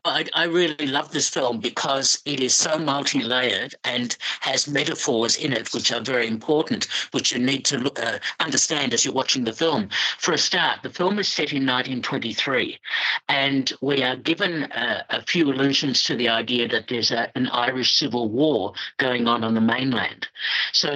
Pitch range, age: 120-145 Hz, 60-79